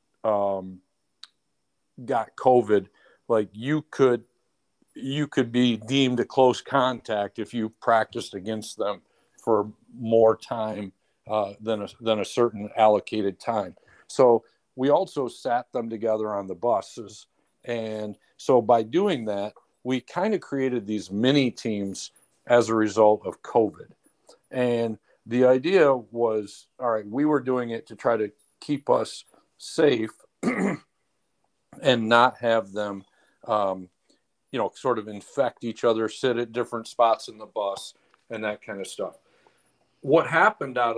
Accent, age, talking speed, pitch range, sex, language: American, 50-69, 140 wpm, 105-130 Hz, male, English